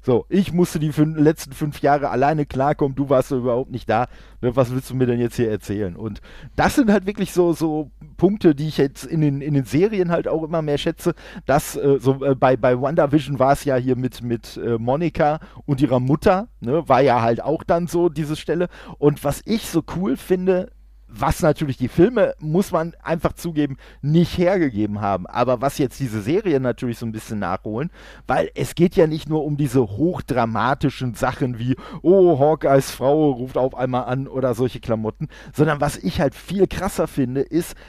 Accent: German